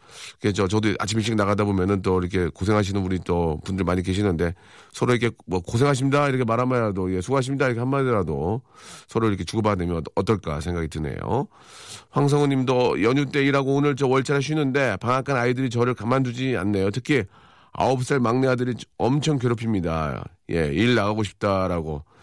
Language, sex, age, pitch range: Korean, male, 40-59, 105-140 Hz